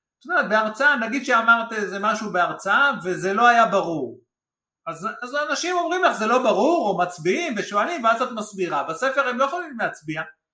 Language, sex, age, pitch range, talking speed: Hebrew, male, 50-69, 160-230 Hz, 165 wpm